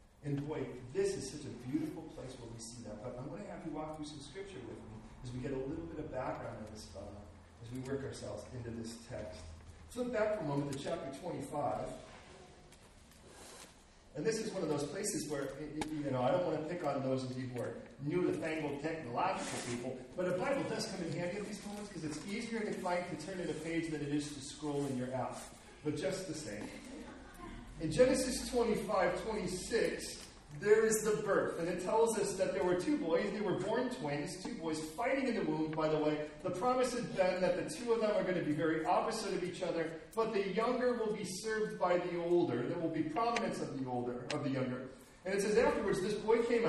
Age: 40-59